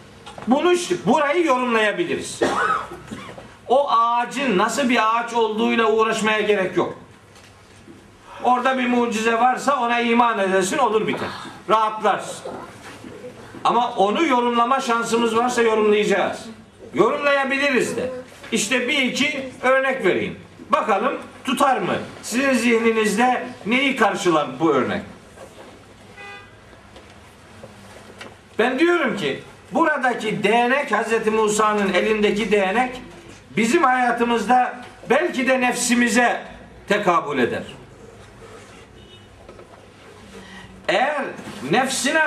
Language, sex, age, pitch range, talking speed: Turkish, male, 50-69, 200-265 Hz, 90 wpm